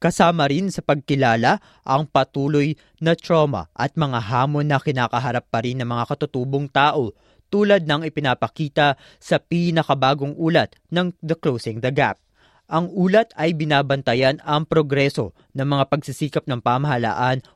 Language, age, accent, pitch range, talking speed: Filipino, 20-39, native, 130-160 Hz, 140 wpm